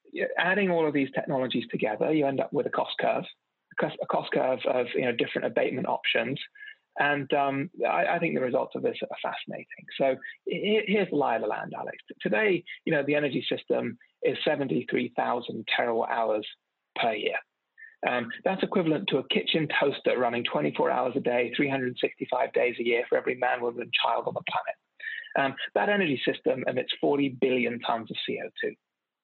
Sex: male